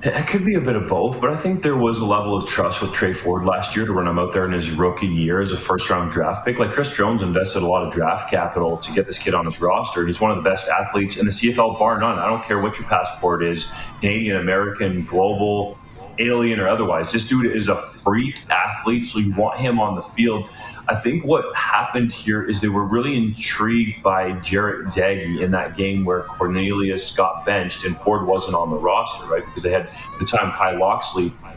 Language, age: English, 30-49